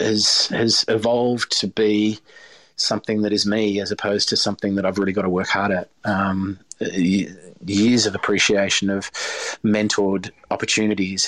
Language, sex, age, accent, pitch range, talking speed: English, male, 30-49, Australian, 105-115 Hz, 150 wpm